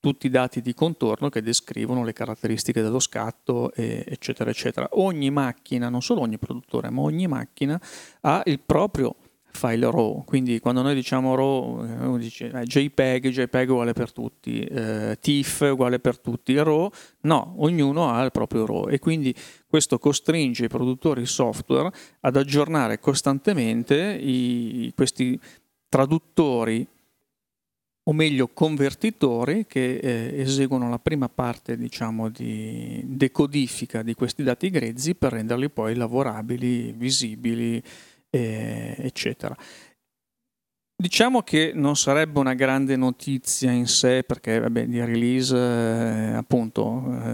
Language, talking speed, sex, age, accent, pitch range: Italian, 130 wpm, male, 40-59, native, 120-145 Hz